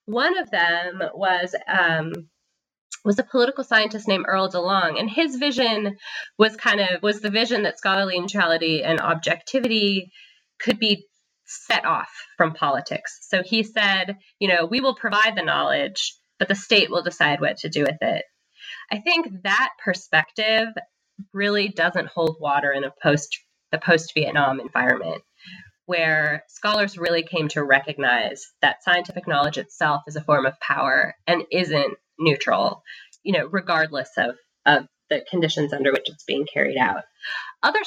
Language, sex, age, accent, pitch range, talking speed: English, female, 20-39, American, 160-210 Hz, 155 wpm